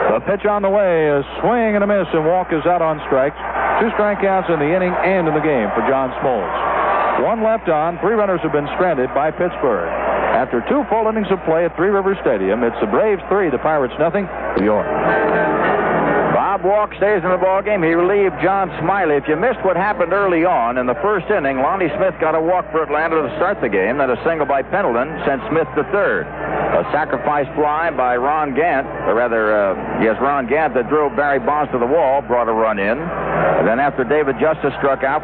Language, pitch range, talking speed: English, 140-190 Hz, 220 wpm